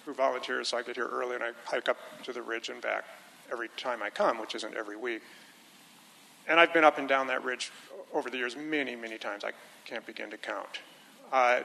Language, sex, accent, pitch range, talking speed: English, male, American, 130-160 Hz, 225 wpm